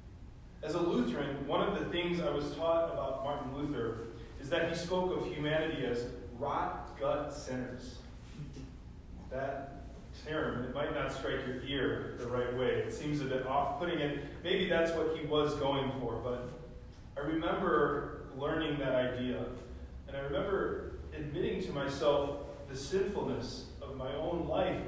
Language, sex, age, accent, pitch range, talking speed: English, male, 30-49, American, 125-165 Hz, 155 wpm